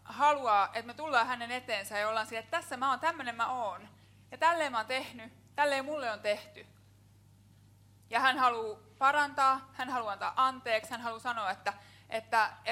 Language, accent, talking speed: Finnish, native, 185 wpm